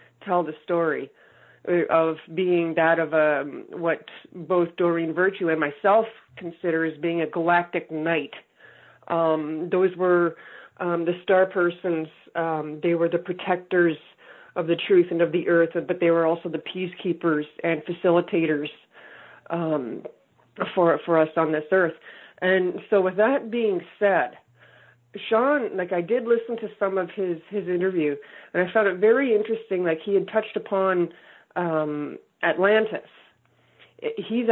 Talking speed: 150 wpm